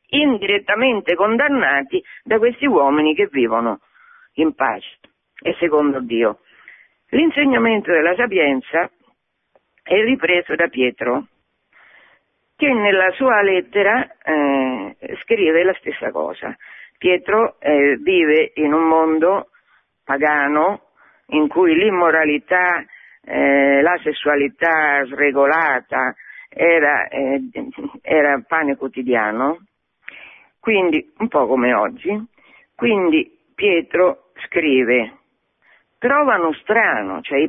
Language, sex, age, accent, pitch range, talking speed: Italian, female, 50-69, native, 150-235 Hz, 90 wpm